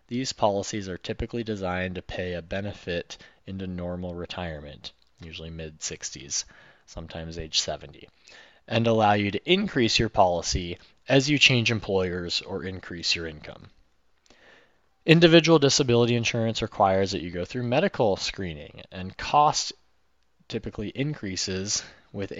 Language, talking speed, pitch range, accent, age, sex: English, 125 wpm, 90-115 Hz, American, 20-39, male